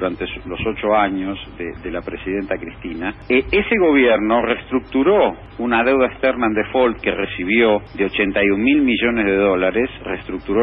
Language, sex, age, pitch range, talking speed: Spanish, male, 50-69, 100-130 Hz, 145 wpm